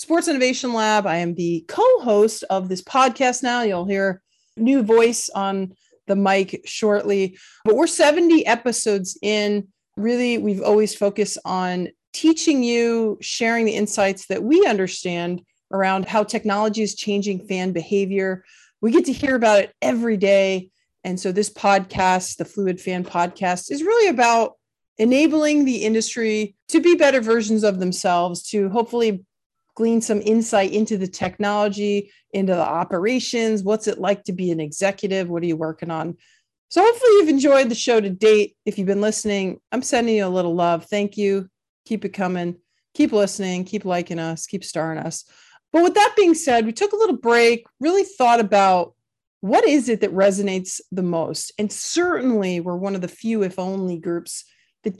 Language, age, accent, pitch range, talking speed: English, 40-59, American, 185-235 Hz, 170 wpm